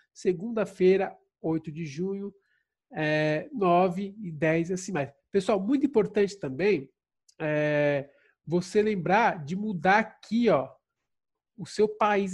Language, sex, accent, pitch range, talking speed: Portuguese, male, Brazilian, 175-220 Hz, 120 wpm